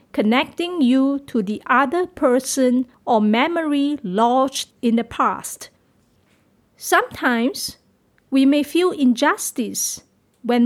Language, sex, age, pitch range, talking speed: English, female, 50-69, 245-305 Hz, 100 wpm